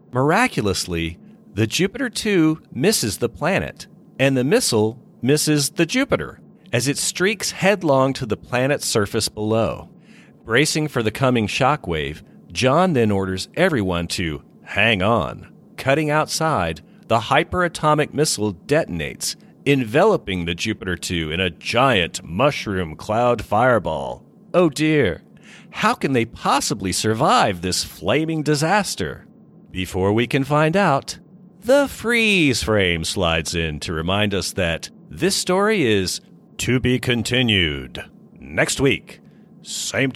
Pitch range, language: 95-155 Hz, English